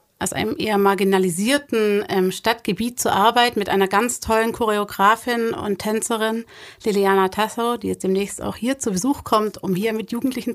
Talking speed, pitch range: 160 wpm, 205-245 Hz